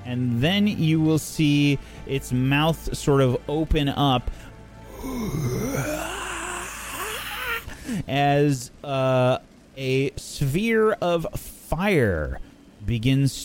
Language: English